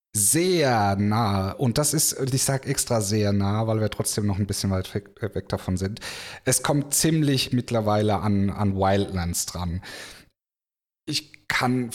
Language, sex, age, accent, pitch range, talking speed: German, male, 30-49, German, 95-125 Hz, 150 wpm